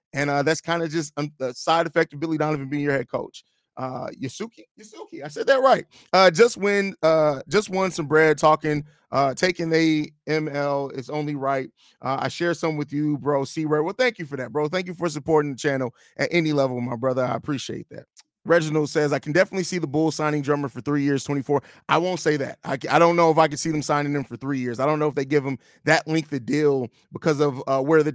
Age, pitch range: 30-49, 145-175 Hz